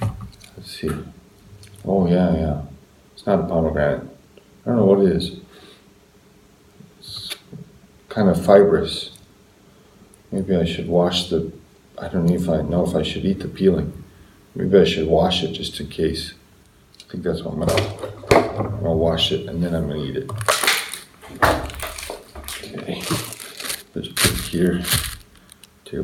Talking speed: 150 wpm